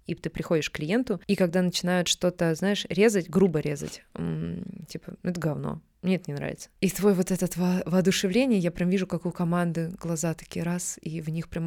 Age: 20-39